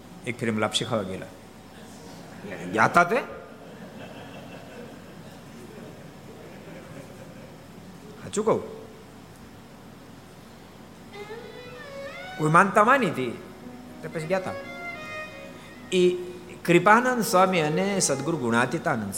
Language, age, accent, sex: Gujarati, 60-79, native, male